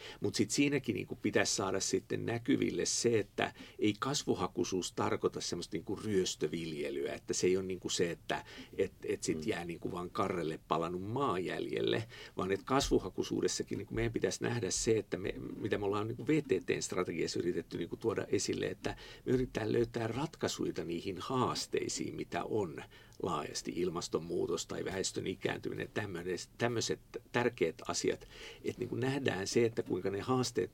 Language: Finnish